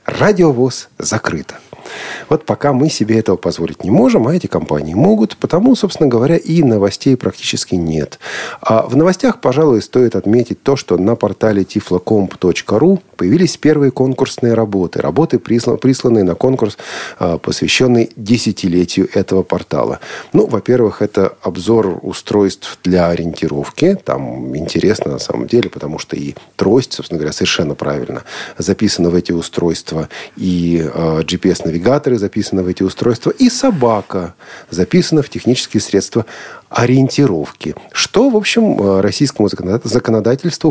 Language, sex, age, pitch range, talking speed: Russian, male, 40-59, 95-135 Hz, 130 wpm